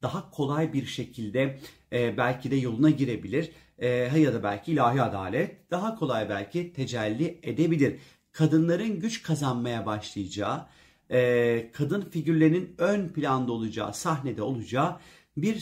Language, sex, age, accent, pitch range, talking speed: Turkish, male, 40-59, native, 120-155 Hz, 115 wpm